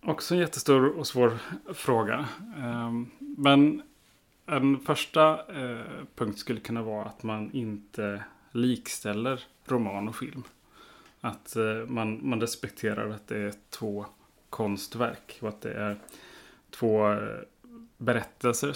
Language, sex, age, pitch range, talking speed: English, male, 30-49, 105-130 Hz, 110 wpm